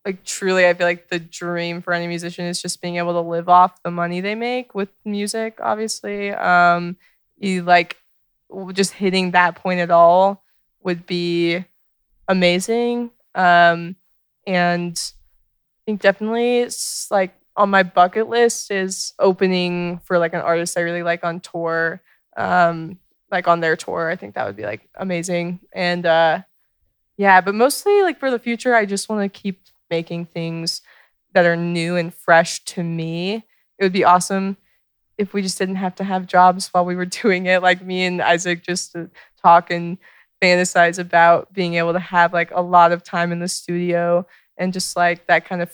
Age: 20-39